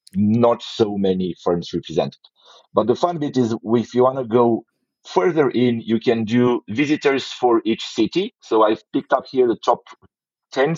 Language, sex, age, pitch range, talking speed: English, male, 50-69, 110-135 Hz, 180 wpm